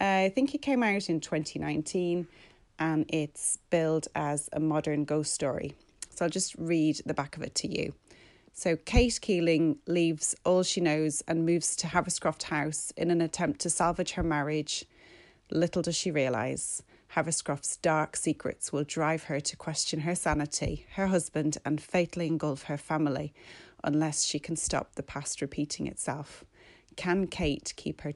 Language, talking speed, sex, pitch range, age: English, 165 wpm, female, 150-170 Hz, 30-49